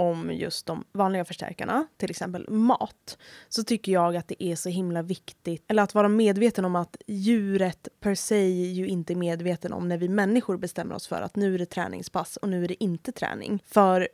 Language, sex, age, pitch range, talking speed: Swedish, female, 20-39, 180-215 Hz, 205 wpm